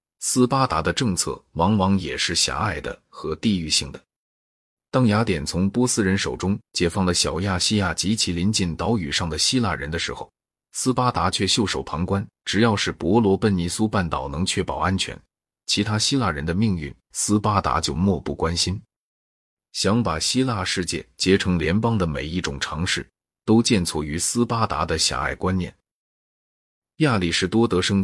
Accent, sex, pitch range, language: native, male, 85-110 Hz, Chinese